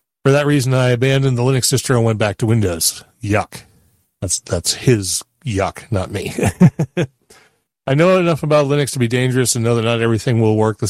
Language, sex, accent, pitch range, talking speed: English, male, American, 105-125 Hz, 200 wpm